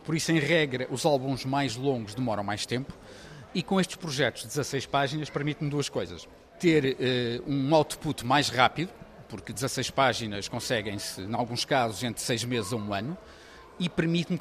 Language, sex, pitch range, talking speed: Portuguese, male, 130-155 Hz, 175 wpm